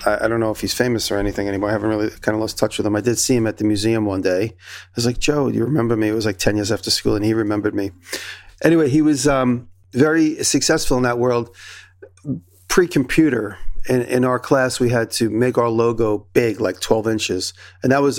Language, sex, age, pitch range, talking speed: English, male, 40-59, 100-125 Hz, 240 wpm